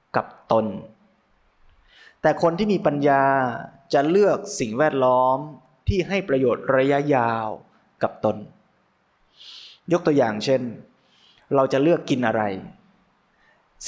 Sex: male